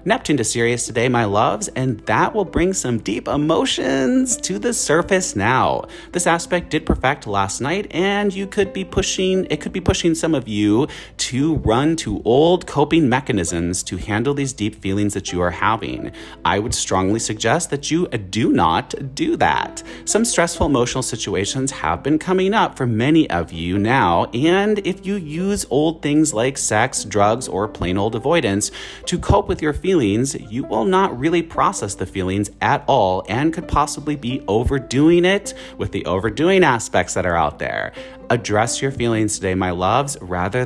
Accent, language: American, English